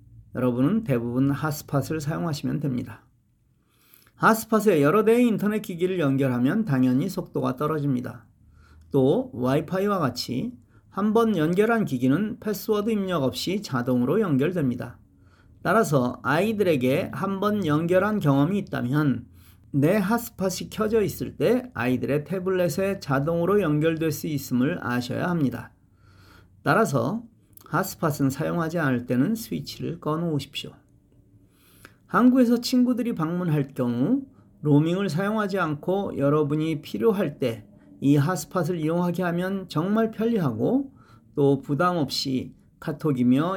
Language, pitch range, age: Korean, 125-190 Hz, 40-59